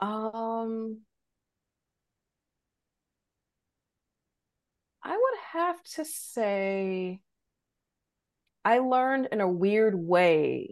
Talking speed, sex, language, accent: 65 wpm, female, English, American